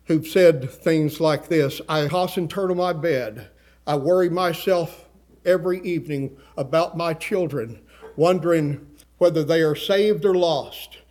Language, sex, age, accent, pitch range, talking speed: English, male, 50-69, American, 155-190 Hz, 145 wpm